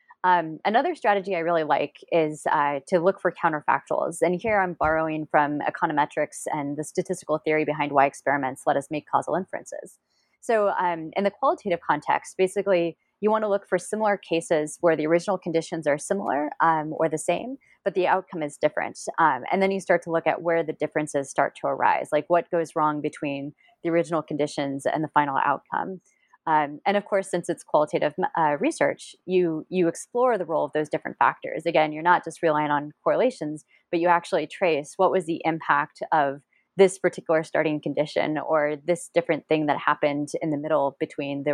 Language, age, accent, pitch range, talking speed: English, 30-49, American, 150-185 Hz, 195 wpm